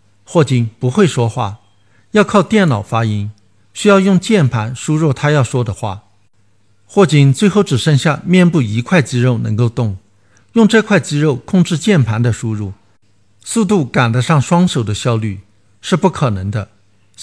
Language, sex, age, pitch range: Chinese, male, 60-79, 105-155 Hz